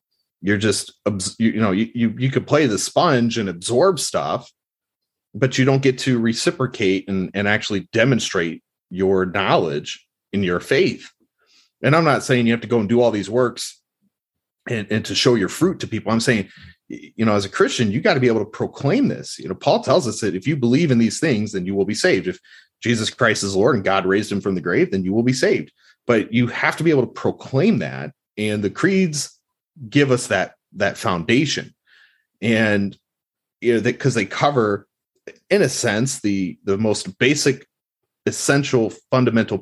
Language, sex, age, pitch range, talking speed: English, male, 30-49, 100-125 Hz, 200 wpm